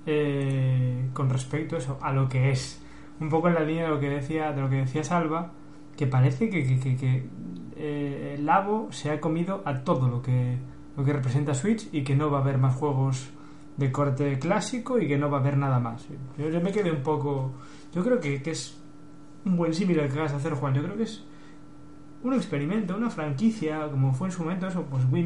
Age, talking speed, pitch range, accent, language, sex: 20-39, 235 wpm, 140-165 Hz, Spanish, Spanish, male